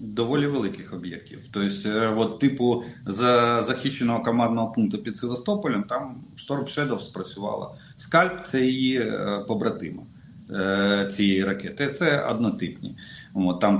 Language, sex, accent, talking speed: Russian, male, native, 105 wpm